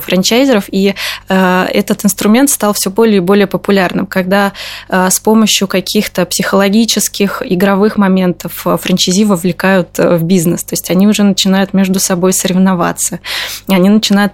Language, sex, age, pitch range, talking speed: Russian, female, 20-39, 180-205 Hz, 130 wpm